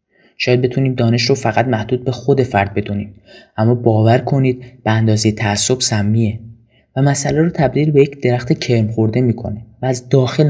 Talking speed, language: 170 wpm, Persian